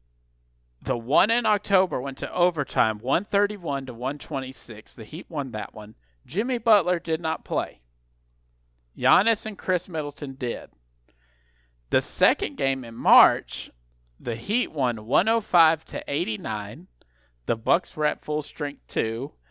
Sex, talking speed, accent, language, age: male, 125 wpm, American, English, 50-69